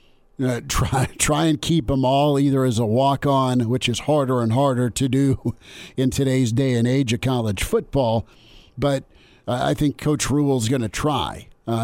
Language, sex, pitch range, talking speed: English, male, 120-140 Hz, 180 wpm